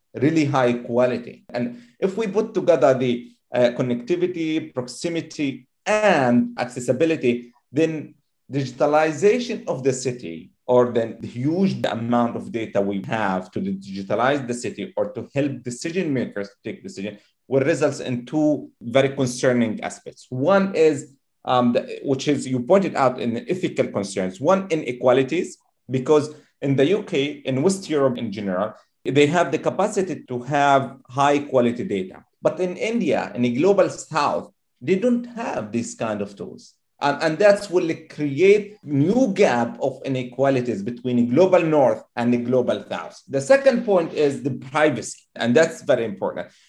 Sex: male